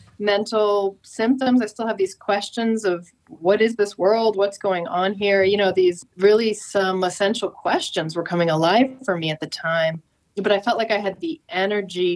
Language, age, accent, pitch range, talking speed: English, 30-49, American, 170-205 Hz, 190 wpm